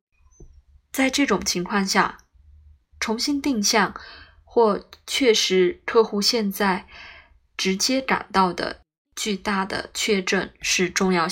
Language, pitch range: Chinese, 180-220 Hz